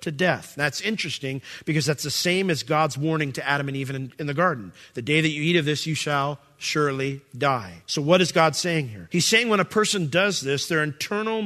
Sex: male